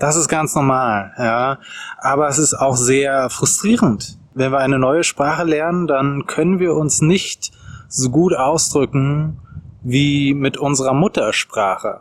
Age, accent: 20-39, German